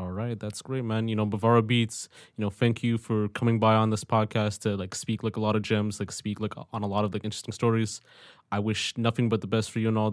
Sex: male